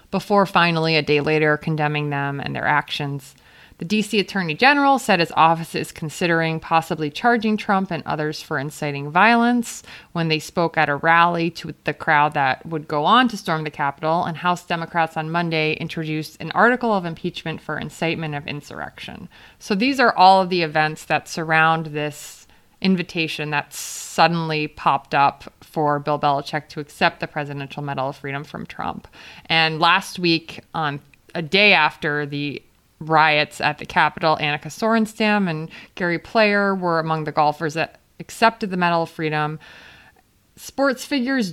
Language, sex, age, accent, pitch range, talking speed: English, female, 20-39, American, 150-190 Hz, 165 wpm